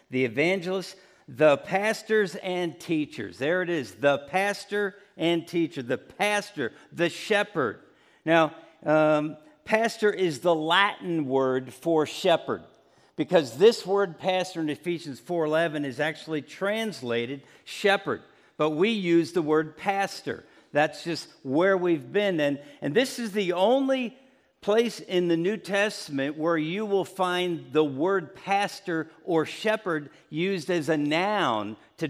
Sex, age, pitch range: male, 50-69, 155-200 Hz